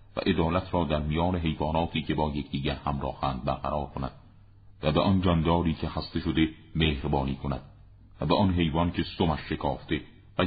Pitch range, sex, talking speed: 75-95 Hz, male, 165 wpm